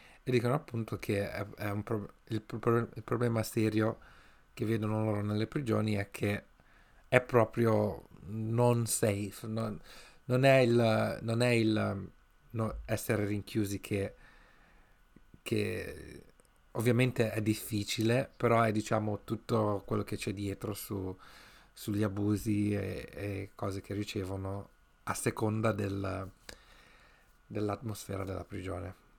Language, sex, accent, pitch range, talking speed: Italian, male, native, 100-115 Hz, 125 wpm